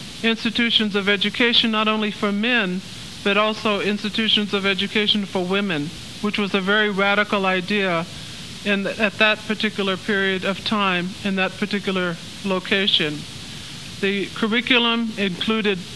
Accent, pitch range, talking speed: American, 190-215 Hz, 130 wpm